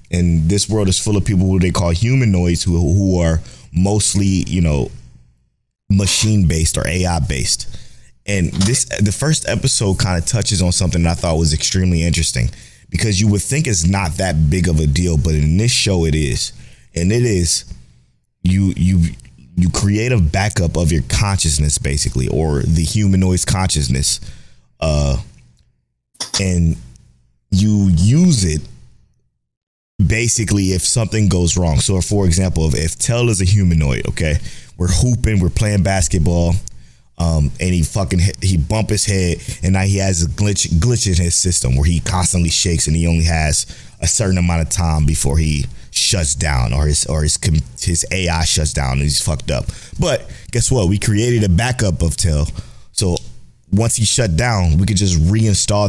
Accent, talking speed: American, 175 wpm